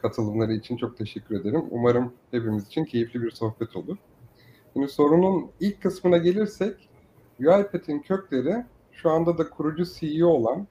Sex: male